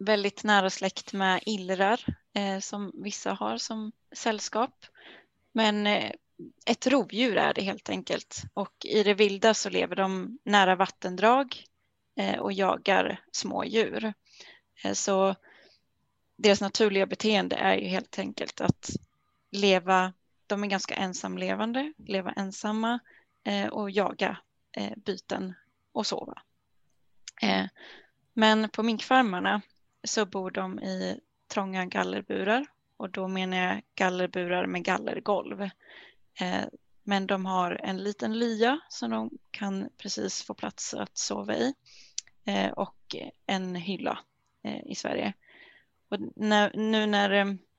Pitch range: 190-215 Hz